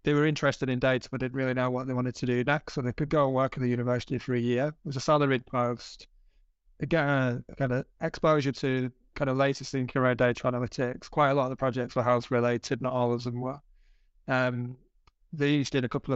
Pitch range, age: 125-145 Hz, 20-39